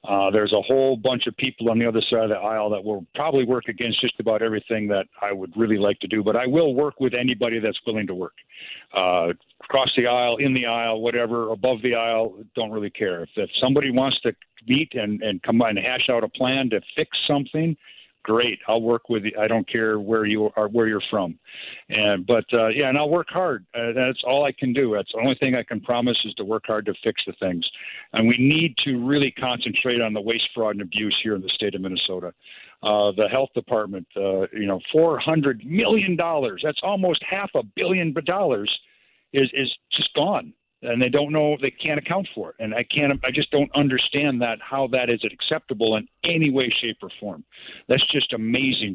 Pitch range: 110-135 Hz